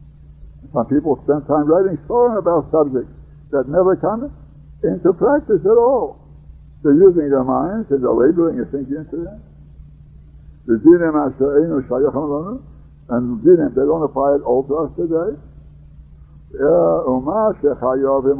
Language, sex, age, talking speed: English, male, 60-79, 110 wpm